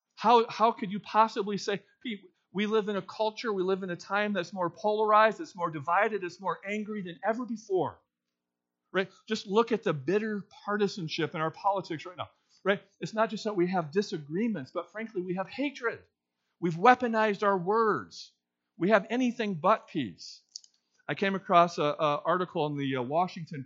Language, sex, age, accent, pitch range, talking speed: English, male, 40-59, American, 165-215 Hz, 185 wpm